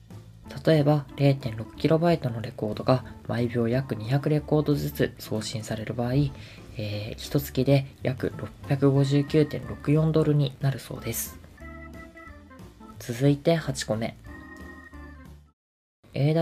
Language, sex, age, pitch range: Japanese, female, 20-39, 110-145 Hz